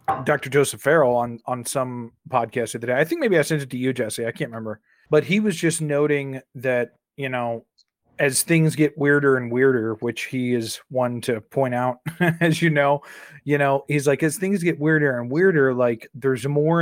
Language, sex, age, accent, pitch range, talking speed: English, male, 30-49, American, 130-155 Hz, 210 wpm